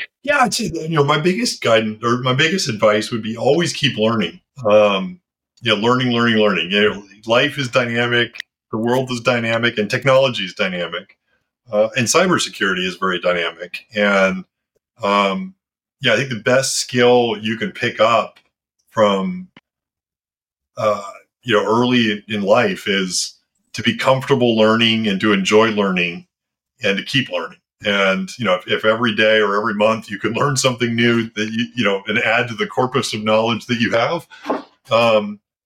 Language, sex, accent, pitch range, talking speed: English, male, American, 105-125 Hz, 175 wpm